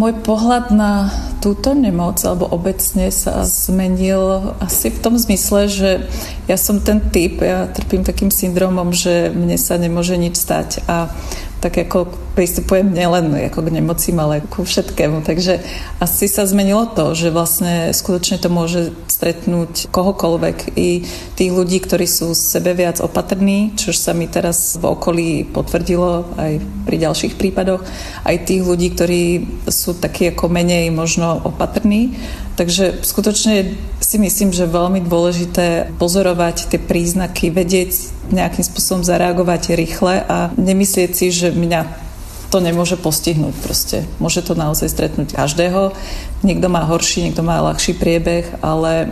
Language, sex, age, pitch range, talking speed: Czech, female, 30-49, 170-190 Hz, 145 wpm